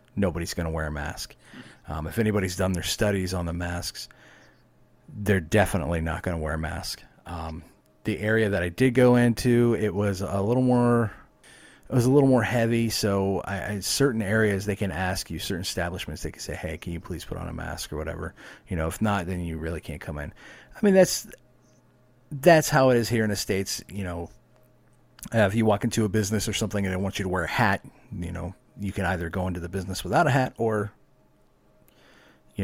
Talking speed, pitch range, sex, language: 220 wpm, 90-110 Hz, male, English